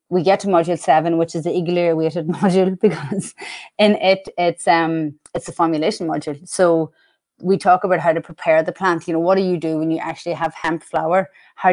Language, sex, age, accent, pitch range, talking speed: English, female, 30-49, Irish, 160-180 Hz, 215 wpm